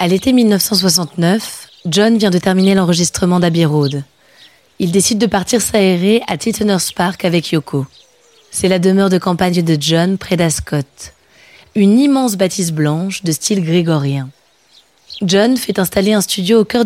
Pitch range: 165-200 Hz